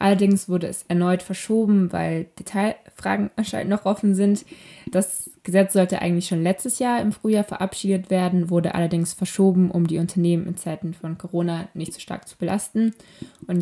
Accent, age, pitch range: German, 20-39, 175-195 Hz